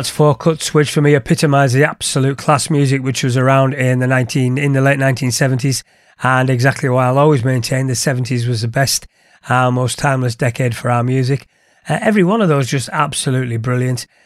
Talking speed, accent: 200 wpm, British